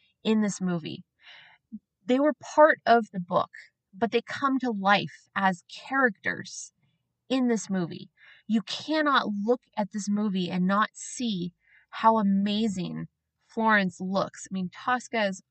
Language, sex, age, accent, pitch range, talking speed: English, female, 20-39, American, 180-220 Hz, 135 wpm